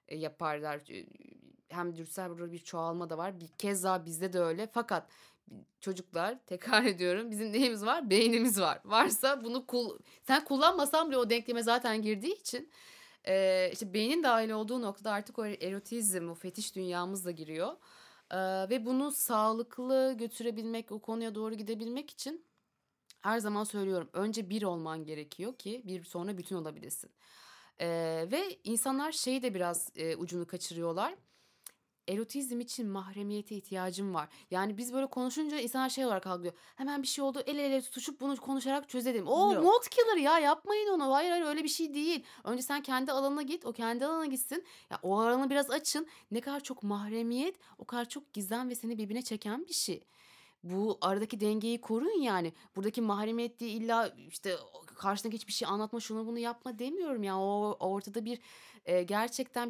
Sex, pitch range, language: female, 195-270 Hz, Turkish